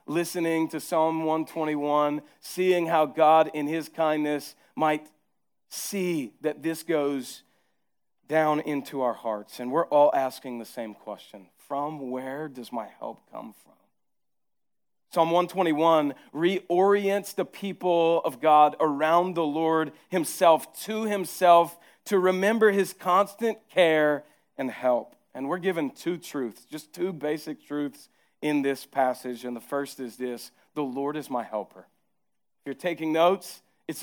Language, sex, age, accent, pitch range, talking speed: English, male, 40-59, American, 150-185 Hz, 140 wpm